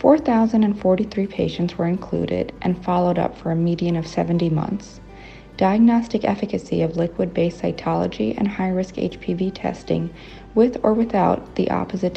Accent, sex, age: American, female, 40-59